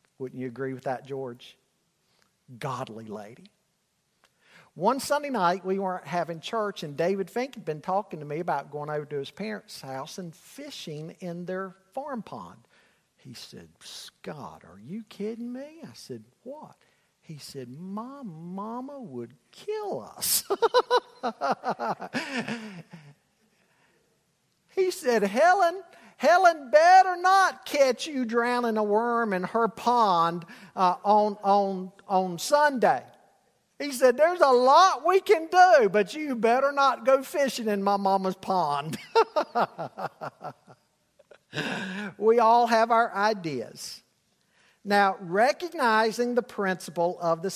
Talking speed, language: 125 wpm, English